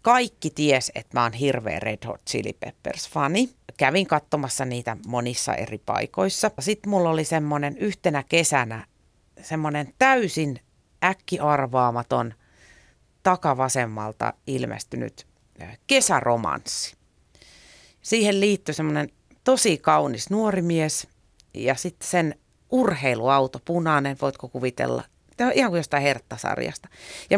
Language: Finnish